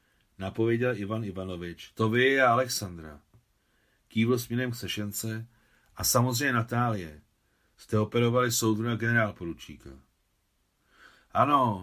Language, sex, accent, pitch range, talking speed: Czech, male, native, 90-120 Hz, 100 wpm